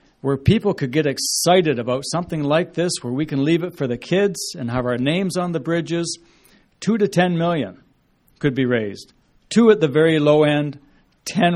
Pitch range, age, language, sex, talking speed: 135-170 Hz, 60-79, English, male, 195 wpm